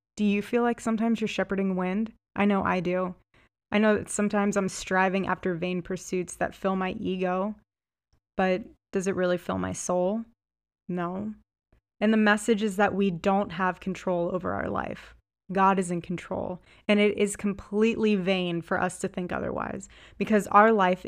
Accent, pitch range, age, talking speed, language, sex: American, 180-210 Hz, 20-39, 175 wpm, English, female